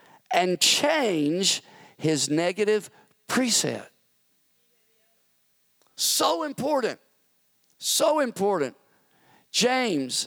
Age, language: 50-69, English